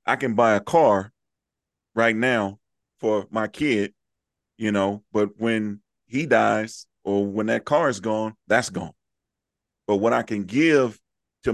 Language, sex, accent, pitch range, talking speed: English, male, American, 100-125 Hz, 155 wpm